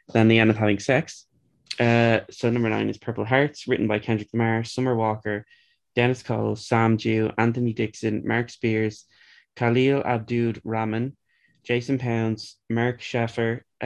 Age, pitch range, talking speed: 20-39, 110-125 Hz, 150 wpm